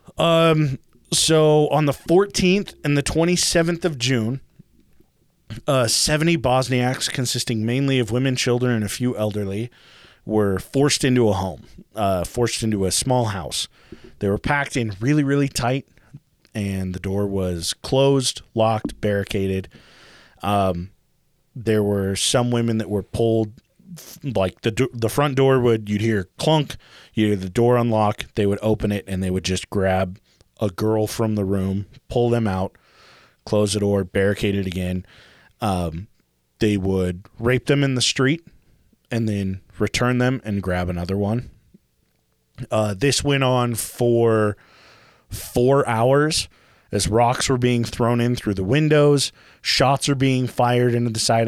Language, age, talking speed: English, 30-49, 155 wpm